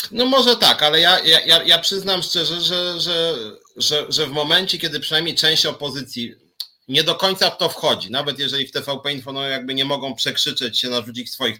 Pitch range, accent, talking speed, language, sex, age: 125-185 Hz, native, 195 wpm, Polish, male, 30-49